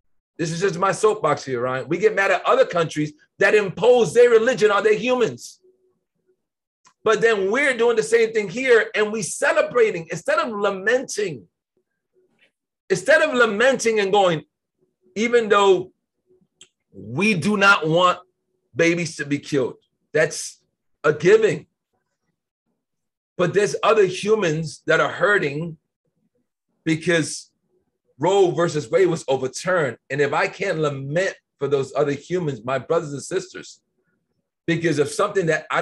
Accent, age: American, 30-49